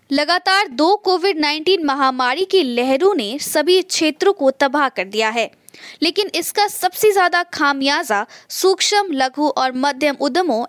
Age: 20-39